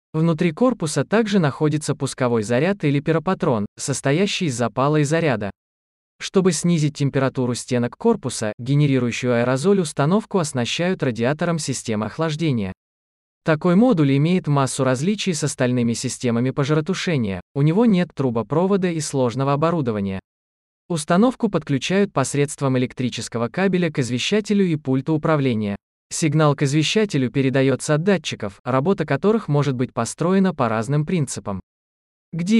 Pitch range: 125-165 Hz